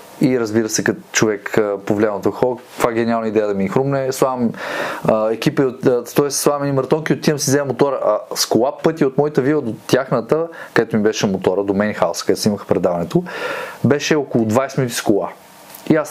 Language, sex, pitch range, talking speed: Bulgarian, male, 125-165 Hz, 205 wpm